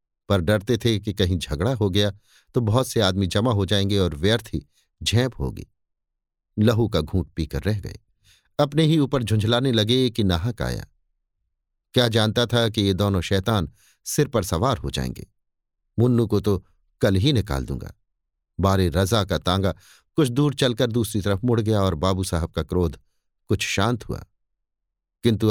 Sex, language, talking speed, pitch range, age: male, Hindi, 170 wpm, 95-125 Hz, 50-69